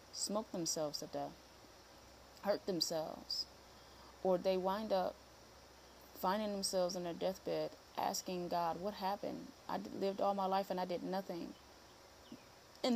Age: 20-39